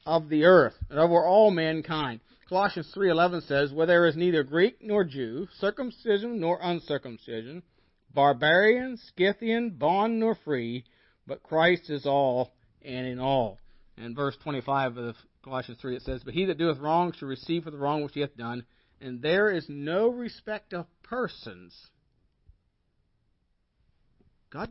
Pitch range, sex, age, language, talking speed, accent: 135-195 Hz, male, 50-69, English, 150 wpm, American